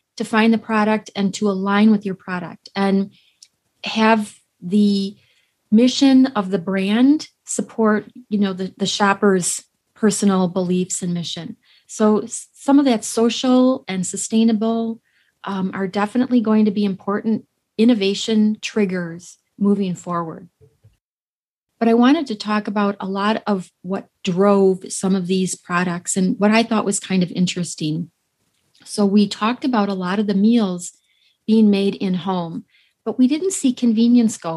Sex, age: female, 30-49